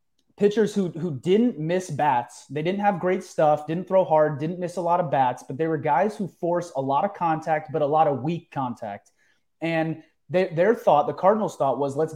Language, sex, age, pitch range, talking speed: English, male, 30-49, 145-180 Hz, 220 wpm